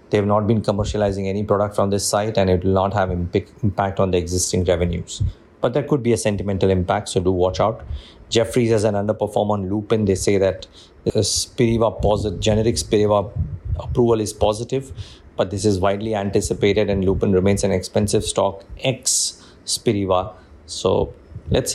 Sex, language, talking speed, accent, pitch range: male, English, 180 wpm, Indian, 95-110 Hz